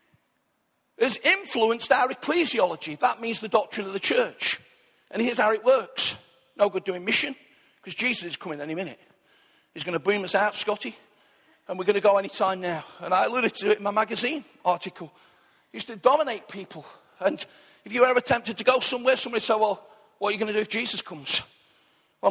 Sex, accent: male, British